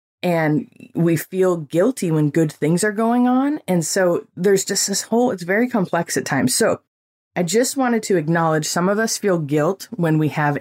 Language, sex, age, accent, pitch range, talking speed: English, female, 20-39, American, 150-195 Hz, 200 wpm